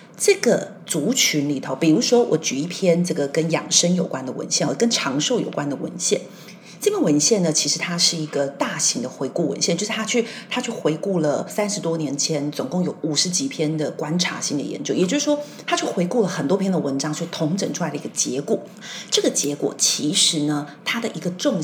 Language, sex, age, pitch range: Chinese, female, 40-59, 155-215 Hz